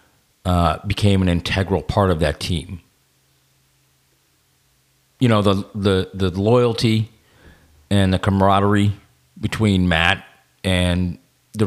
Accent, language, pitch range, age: American, English, 90-110 Hz, 40-59